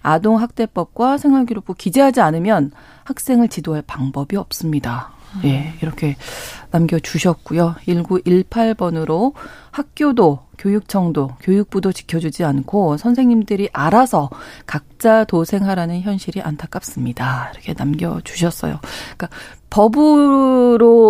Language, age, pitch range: Korean, 40-59, 160-230 Hz